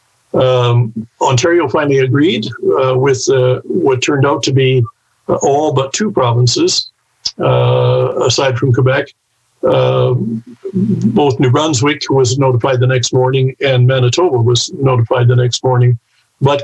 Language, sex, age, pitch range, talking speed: English, male, 50-69, 120-135 Hz, 135 wpm